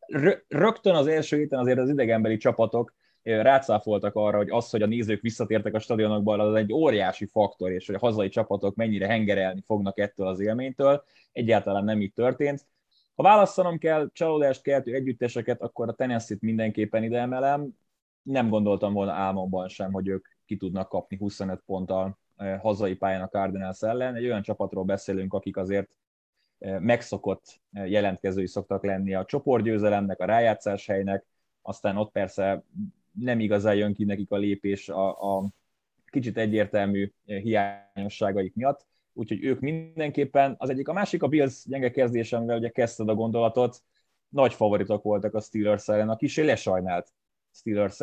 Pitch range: 100-125 Hz